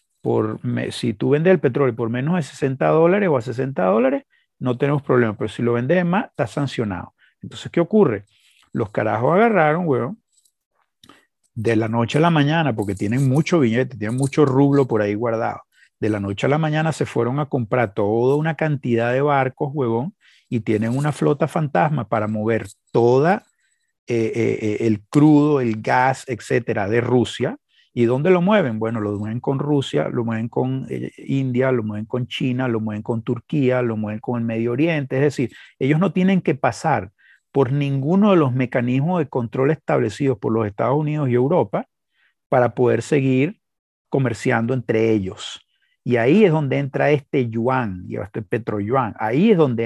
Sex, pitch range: male, 115-150 Hz